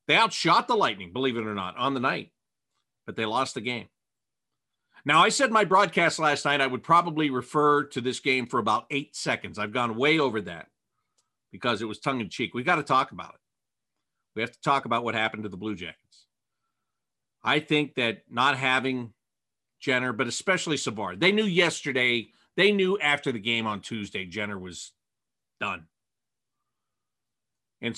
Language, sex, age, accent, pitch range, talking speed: English, male, 50-69, American, 115-155 Hz, 180 wpm